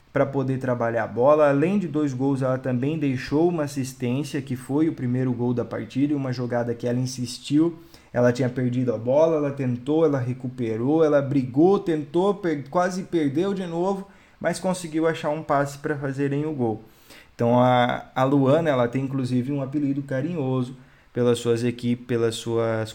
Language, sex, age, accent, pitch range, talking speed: Portuguese, male, 20-39, Brazilian, 120-150 Hz, 175 wpm